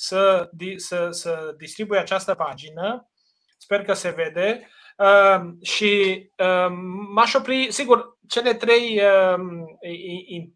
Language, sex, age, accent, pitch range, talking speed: Romanian, male, 30-49, native, 185-245 Hz, 115 wpm